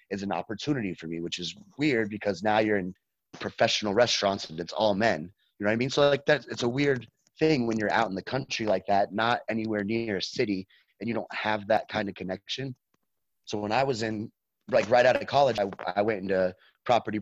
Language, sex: English, male